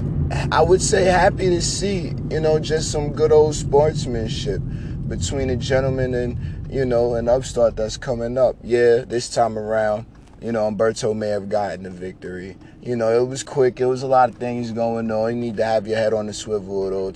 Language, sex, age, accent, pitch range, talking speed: English, male, 20-39, American, 95-125 Hz, 210 wpm